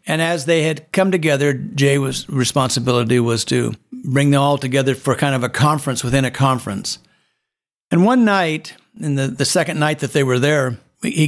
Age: 60-79